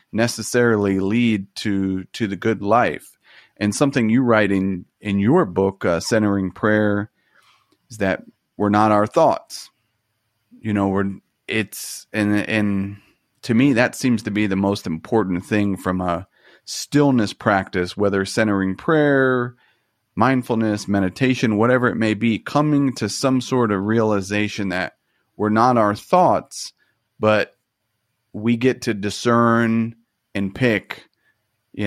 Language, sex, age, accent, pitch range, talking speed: English, male, 30-49, American, 100-115 Hz, 135 wpm